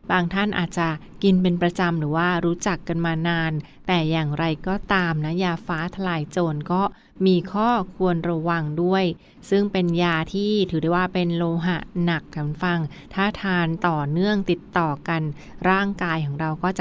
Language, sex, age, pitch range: Thai, female, 20-39, 170-195 Hz